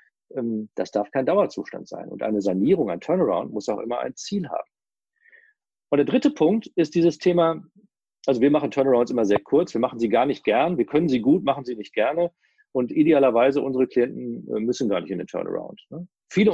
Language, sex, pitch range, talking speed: German, male, 120-185 Hz, 200 wpm